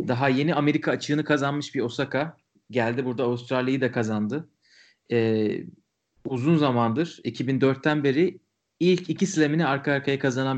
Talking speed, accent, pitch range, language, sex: 130 wpm, native, 115-145 Hz, Turkish, male